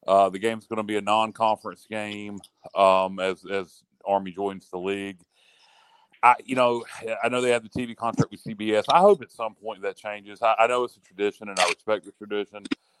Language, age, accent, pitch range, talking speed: English, 40-59, American, 105-125 Hz, 210 wpm